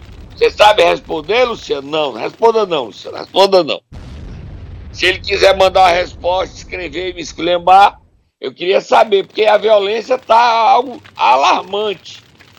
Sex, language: male, Portuguese